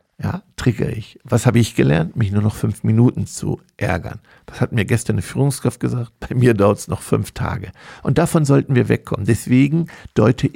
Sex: male